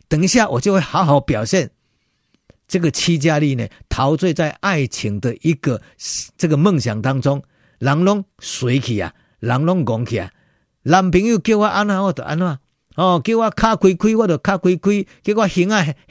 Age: 50-69